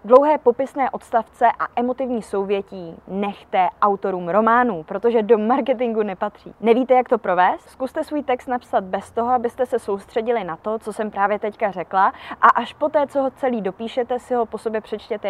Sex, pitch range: female, 200-255 Hz